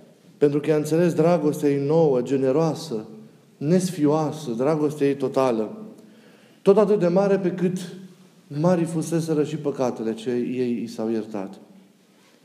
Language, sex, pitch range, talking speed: Romanian, male, 130-185 Hz, 130 wpm